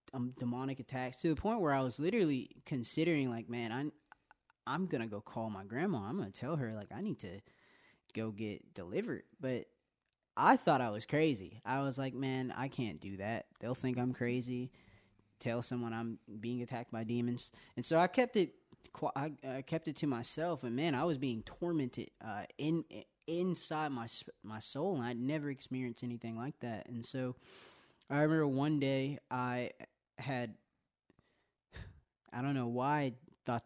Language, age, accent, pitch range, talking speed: English, 20-39, American, 110-140 Hz, 180 wpm